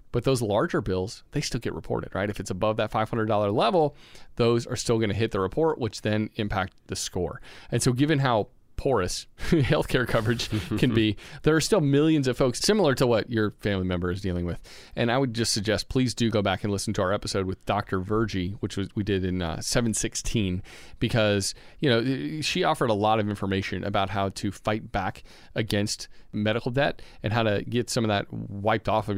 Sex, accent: male, American